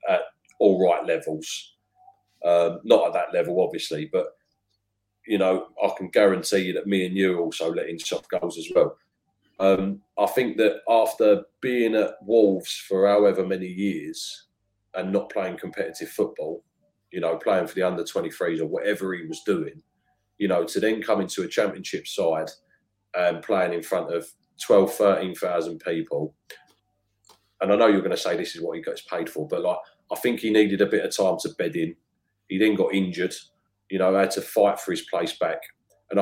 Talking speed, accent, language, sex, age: 190 wpm, British, English, male, 30-49